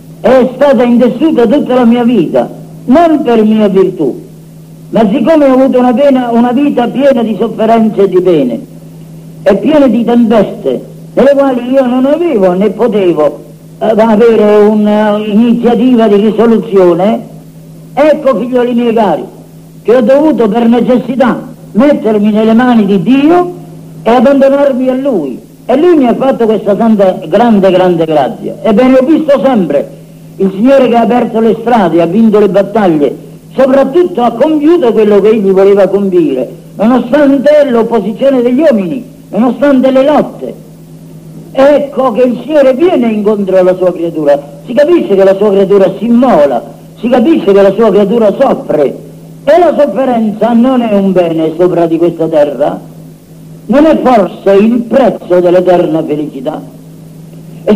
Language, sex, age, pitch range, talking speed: Italian, female, 50-69, 195-265 Hz, 150 wpm